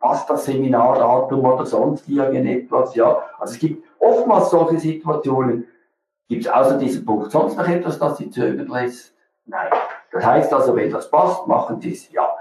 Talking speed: 175 wpm